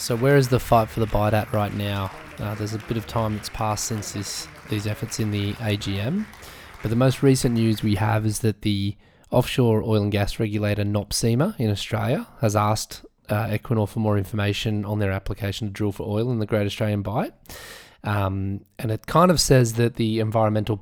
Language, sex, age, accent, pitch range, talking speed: English, male, 20-39, Australian, 105-120 Hz, 205 wpm